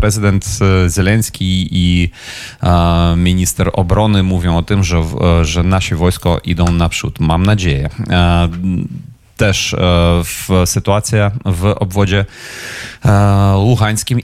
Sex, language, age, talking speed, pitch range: male, Polish, 30-49, 90 wpm, 90-105 Hz